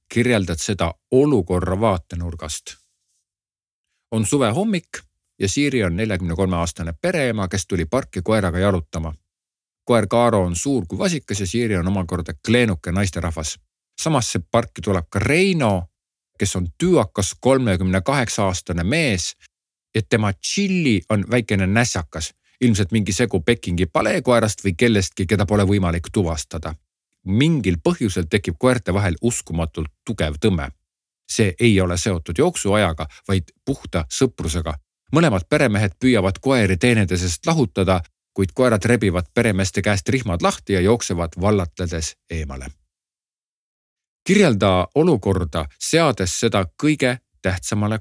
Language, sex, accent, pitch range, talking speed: Czech, male, Finnish, 90-120 Hz, 120 wpm